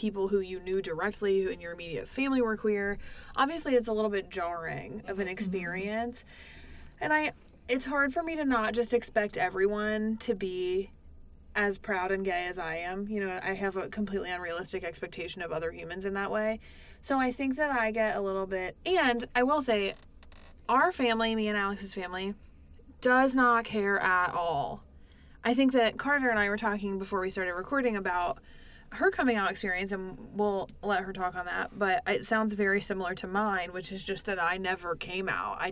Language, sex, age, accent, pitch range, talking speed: English, female, 20-39, American, 185-225 Hz, 200 wpm